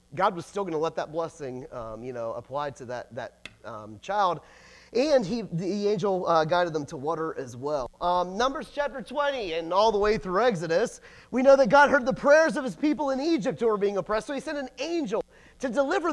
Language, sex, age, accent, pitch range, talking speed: English, male, 30-49, American, 175-280 Hz, 225 wpm